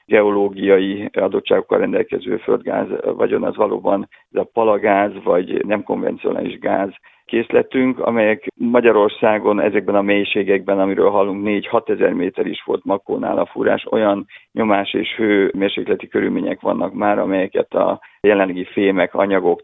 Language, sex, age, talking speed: Hungarian, male, 50-69, 130 wpm